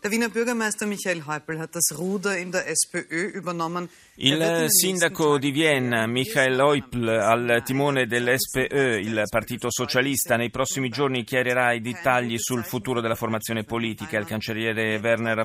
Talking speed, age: 100 wpm, 30-49